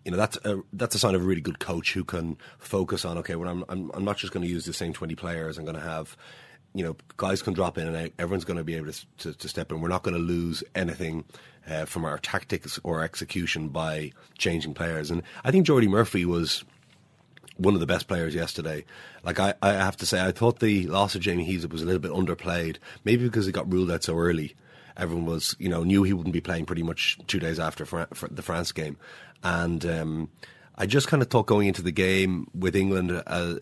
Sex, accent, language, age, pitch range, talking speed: male, Irish, English, 30-49, 80-95 Hz, 245 wpm